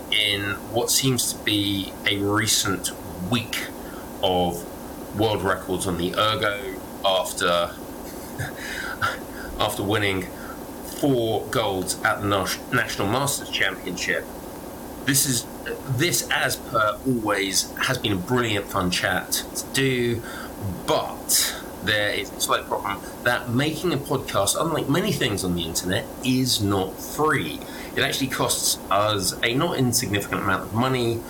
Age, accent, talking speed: 30-49, British, 130 wpm